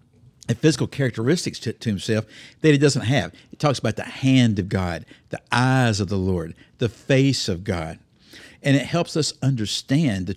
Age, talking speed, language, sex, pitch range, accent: 60-79, 185 wpm, English, male, 105-140 Hz, American